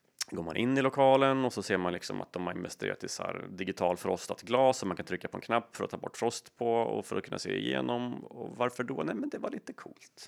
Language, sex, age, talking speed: Swedish, male, 30-49, 280 wpm